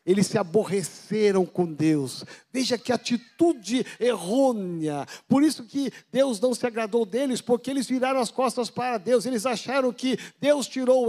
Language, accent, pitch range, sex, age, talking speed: Portuguese, Brazilian, 220-265 Hz, male, 60-79, 155 wpm